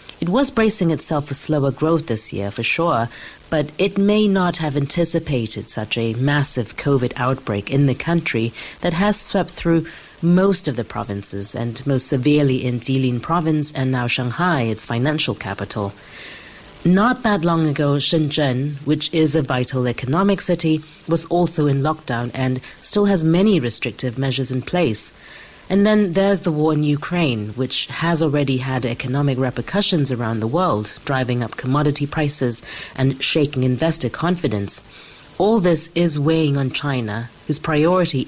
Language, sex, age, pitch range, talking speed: English, female, 40-59, 125-165 Hz, 155 wpm